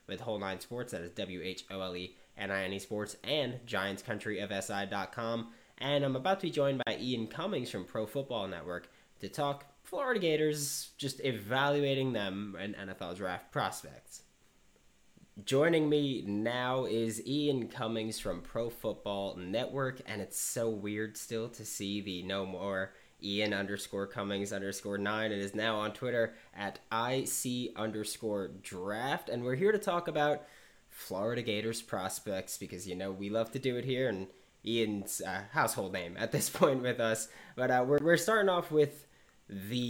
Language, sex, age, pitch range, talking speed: English, male, 20-39, 100-135 Hz, 155 wpm